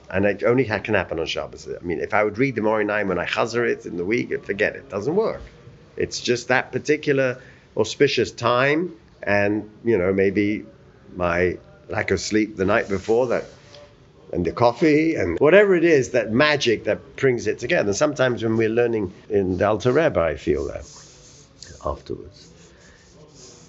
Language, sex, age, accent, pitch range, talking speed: English, male, 50-69, British, 110-140 Hz, 180 wpm